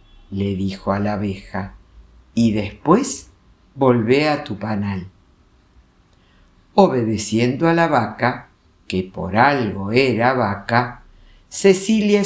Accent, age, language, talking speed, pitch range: Argentinian, 50-69, Spanish, 105 wpm, 100-150 Hz